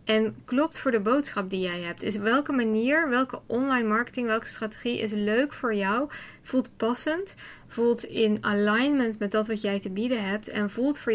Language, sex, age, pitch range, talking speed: English, female, 10-29, 210-250 Hz, 190 wpm